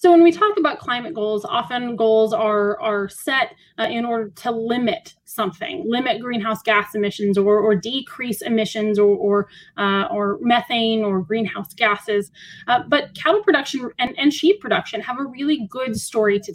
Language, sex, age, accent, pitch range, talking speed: English, female, 10-29, American, 205-265 Hz, 175 wpm